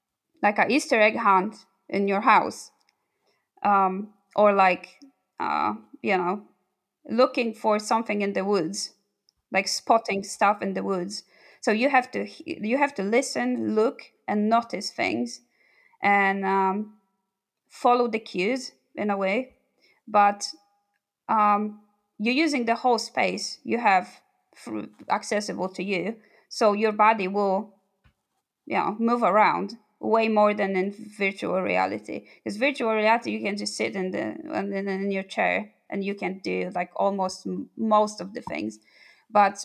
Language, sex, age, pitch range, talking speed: English, female, 20-39, 195-235 Hz, 145 wpm